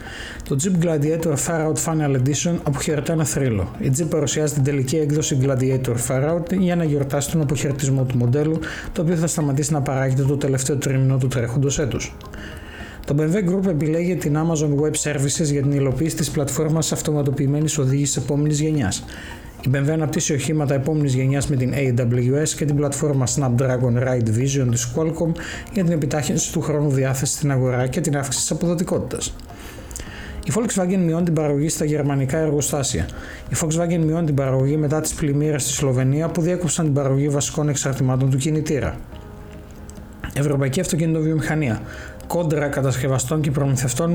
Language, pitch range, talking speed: Greek, 135-160 Hz, 155 wpm